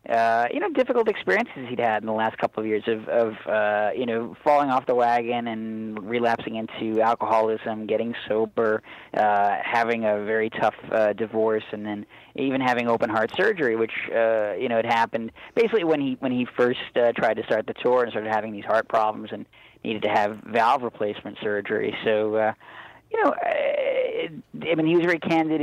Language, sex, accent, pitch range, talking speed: English, male, American, 110-135 Hz, 195 wpm